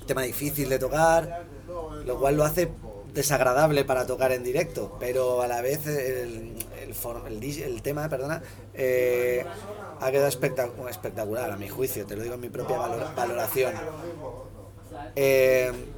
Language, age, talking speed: Spanish, 30-49, 145 wpm